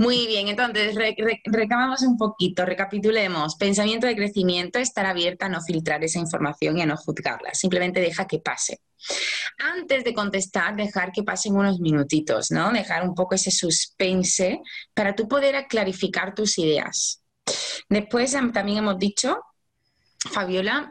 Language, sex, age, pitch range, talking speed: Spanish, female, 20-39, 185-245 Hz, 145 wpm